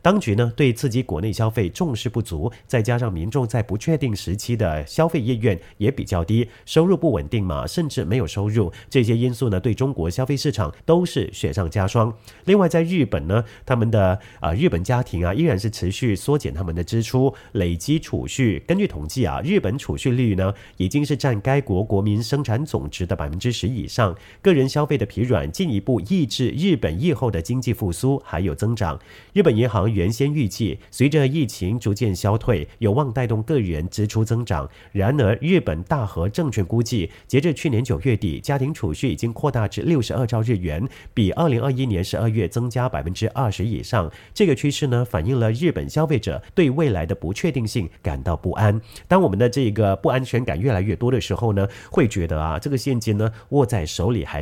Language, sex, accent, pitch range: English, male, Chinese, 100-135 Hz